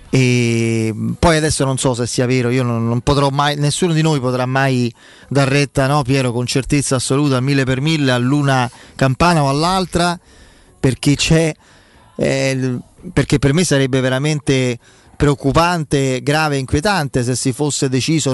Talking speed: 155 wpm